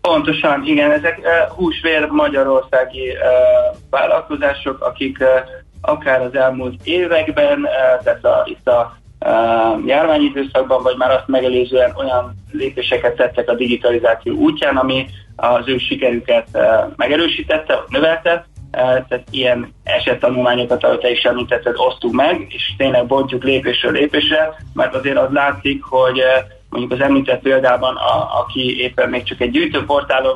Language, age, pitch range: Hungarian, 20-39, 125-150 Hz